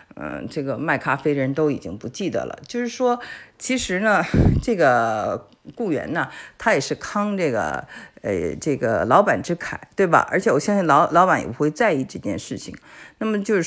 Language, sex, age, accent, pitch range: Chinese, female, 50-69, native, 130-170 Hz